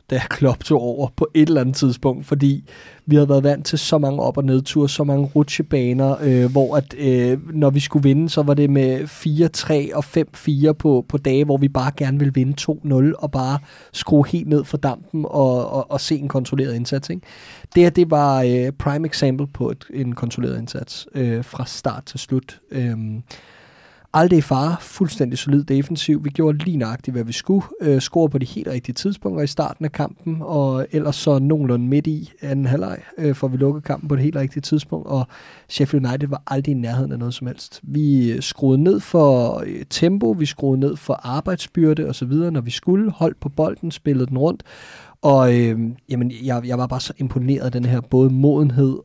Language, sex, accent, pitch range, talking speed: Danish, male, native, 130-150 Hz, 205 wpm